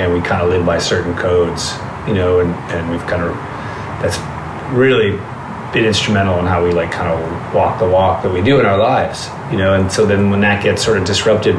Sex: male